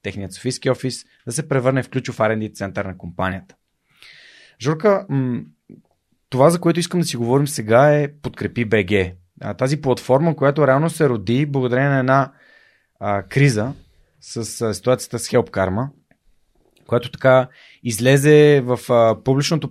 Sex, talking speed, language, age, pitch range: male, 145 wpm, Bulgarian, 30-49, 115-145 Hz